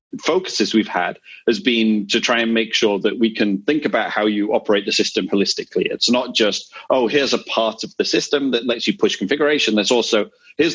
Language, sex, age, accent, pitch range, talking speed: English, male, 30-49, British, 105-125 Hz, 220 wpm